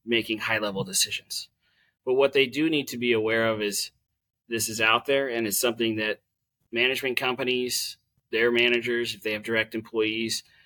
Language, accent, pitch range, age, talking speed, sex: English, American, 110-125 Hz, 30-49, 175 wpm, male